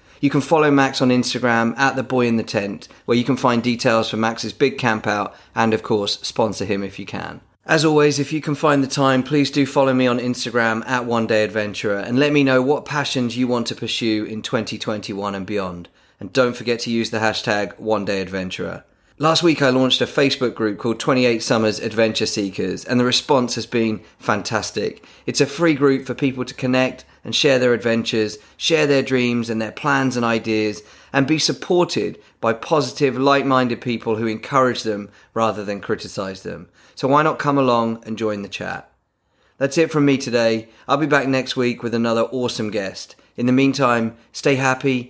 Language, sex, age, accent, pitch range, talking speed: English, male, 30-49, British, 110-135 Hz, 190 wpm